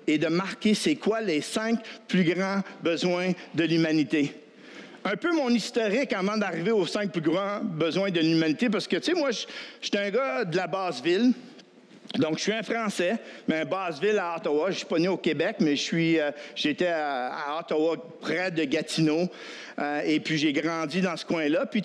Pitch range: 165-230 Hz